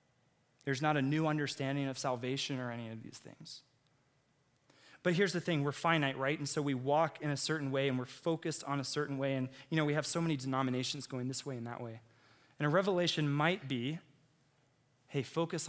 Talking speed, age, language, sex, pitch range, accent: 210 wpm, 20-39, English, male, 130-155 Hz, American